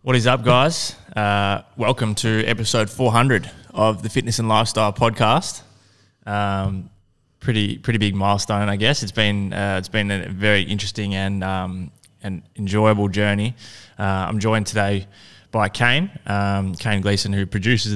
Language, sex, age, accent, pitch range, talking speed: English, male, 20-39, Australian, 100-110 Hz, 155 wpm